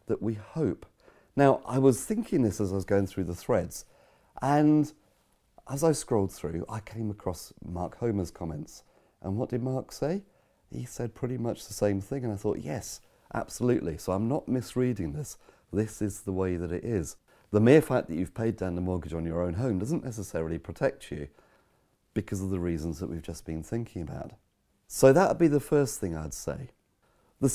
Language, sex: English, male